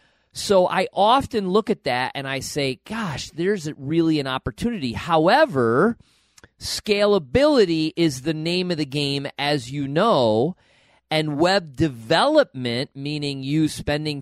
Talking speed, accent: 130 wpm, American